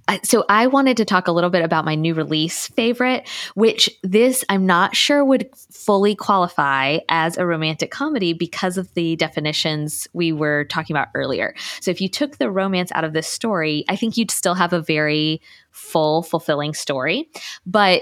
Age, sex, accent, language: 20-39, female, American, English